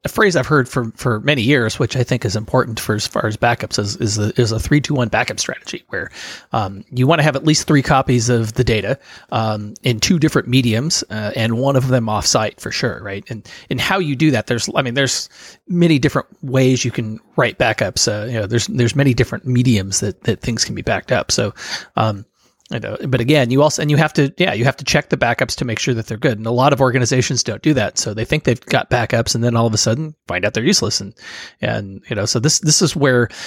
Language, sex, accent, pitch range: English, male, American, 110-135 Hz